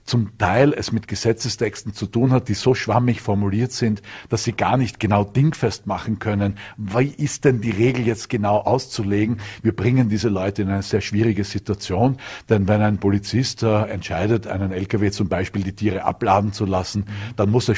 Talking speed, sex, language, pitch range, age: 185 wpm, male, German, 95-115 Hz, 50-69